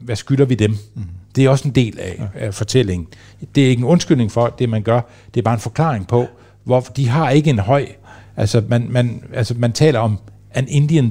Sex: male